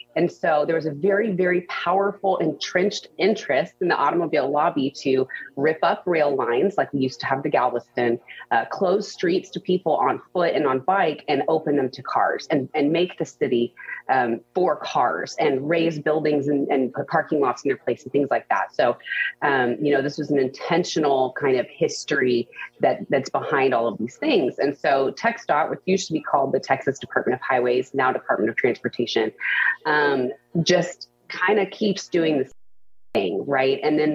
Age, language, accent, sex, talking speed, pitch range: 30-49, English, American, female, 195 wpm, 135-195 Hz